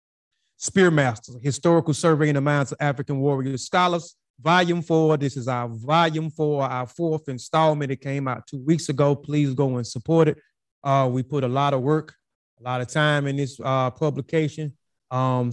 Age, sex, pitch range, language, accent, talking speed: 20-39, male, 130-155 Hz, English, American, 180 wpm